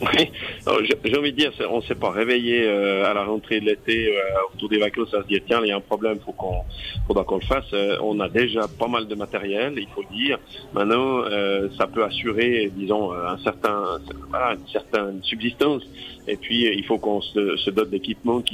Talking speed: 235 wpm